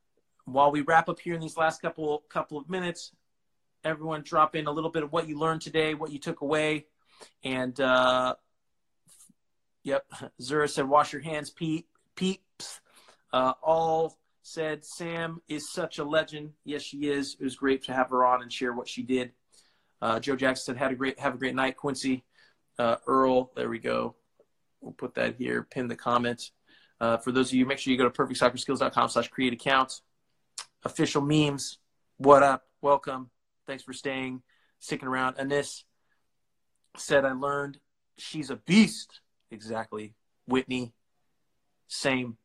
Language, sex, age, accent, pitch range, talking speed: English, male, 30-49, American, 130-155 Hz, 165 wpm